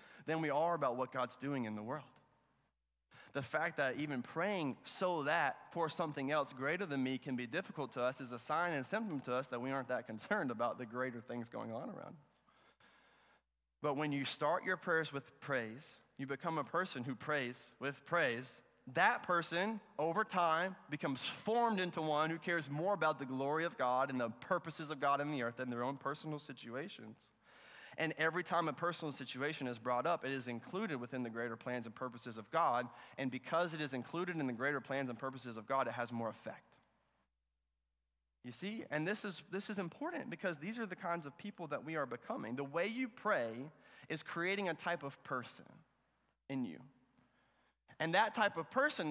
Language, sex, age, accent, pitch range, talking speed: English, male, 30-49, American, 125-165 Hz, 200 wpm